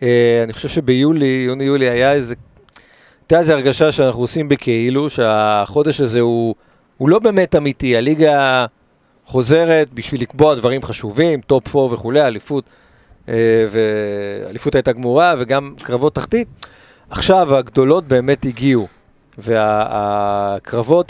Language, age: Hebrew, 40-59